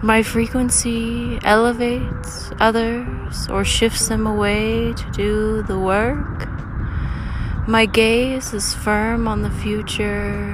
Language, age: English, 20-39